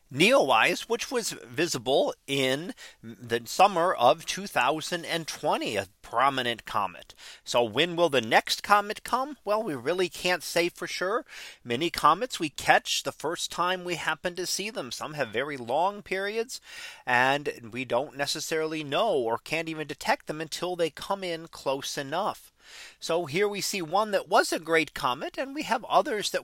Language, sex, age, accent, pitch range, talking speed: English, male, 40-59, American, 155-210 Hz, 170 wpm